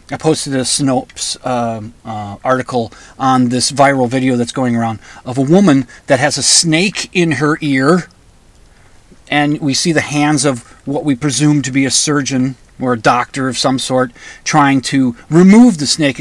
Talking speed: 180 wpm